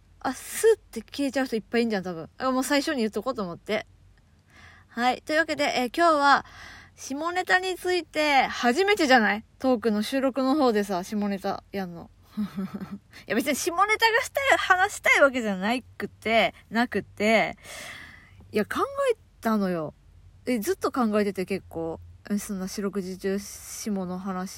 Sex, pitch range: female, 190-305 Hz